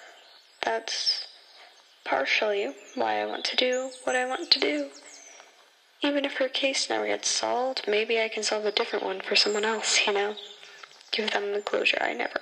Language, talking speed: English, 180 wpm